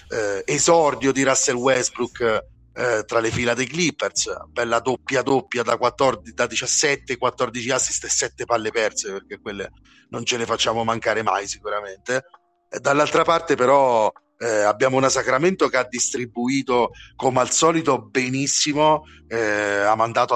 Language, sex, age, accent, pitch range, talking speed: Italian, male, 40-59, native, 115-140 Hz, 150 wpm